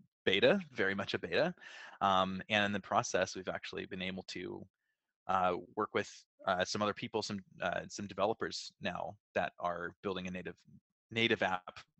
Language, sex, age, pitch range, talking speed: English, male, 20-39, 95-115 Hz, 170 wpm